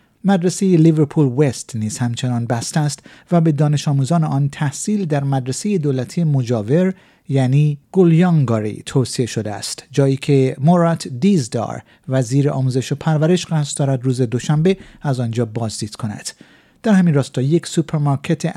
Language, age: Persian, 50-69